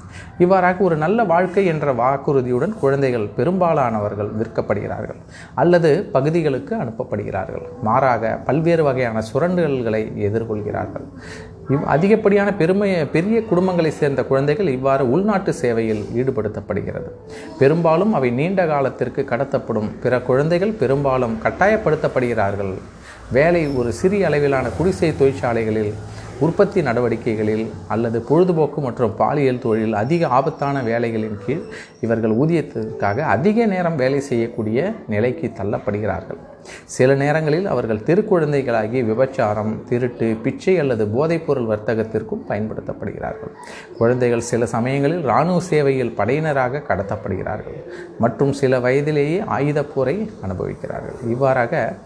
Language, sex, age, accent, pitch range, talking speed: Tamil, male, 30-49, native, 115-165 Hz, 100 wpm